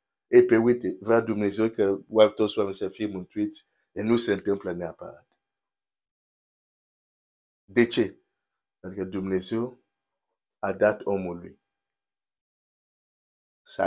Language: Romanian